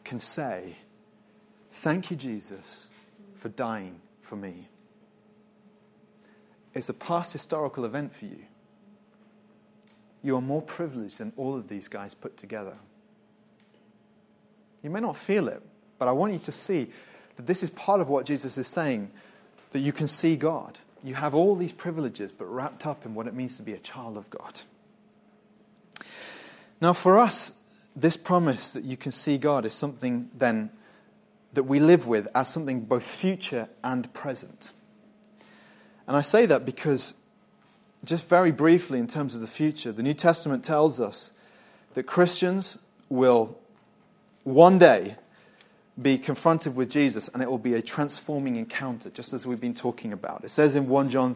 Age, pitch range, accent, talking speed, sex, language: 30-49, 135-210 Hz, British, 160 wpm, male, English